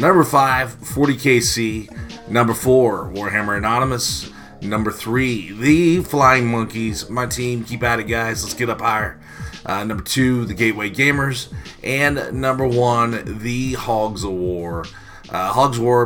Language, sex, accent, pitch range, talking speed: English, male, American, 100-120 Hz, 145 wpm